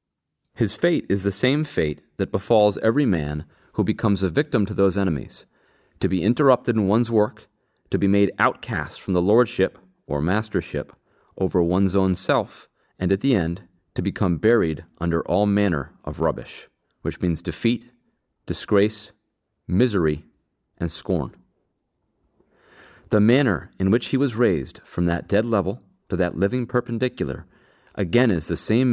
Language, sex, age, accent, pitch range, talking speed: English, male, 30-49, American, 90-115 Hz, 155 wpm